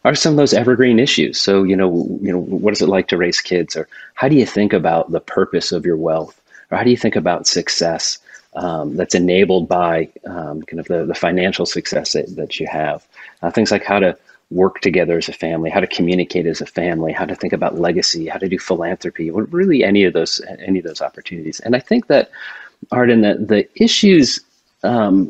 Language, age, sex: English, 30-49, male